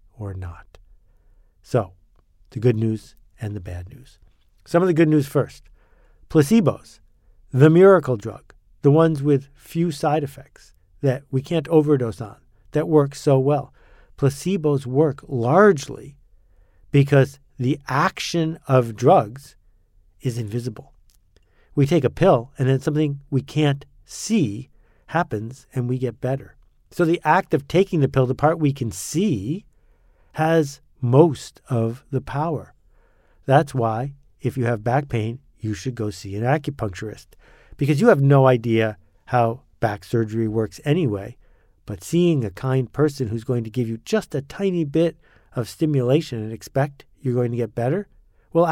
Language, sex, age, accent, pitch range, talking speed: English, male, 50-69, American, 110-150 Hz, 155 wpm